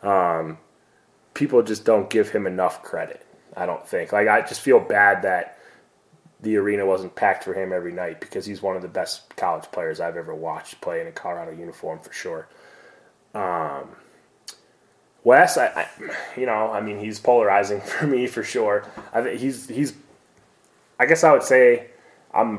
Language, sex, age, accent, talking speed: English, male, 20-39, American, 175 wpm